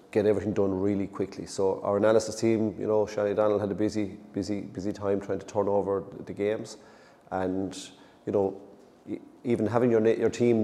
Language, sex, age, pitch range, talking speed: English, male, 30-49, 95-105 Hz, 190 wpm